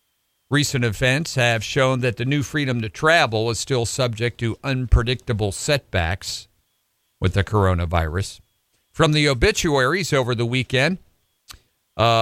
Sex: male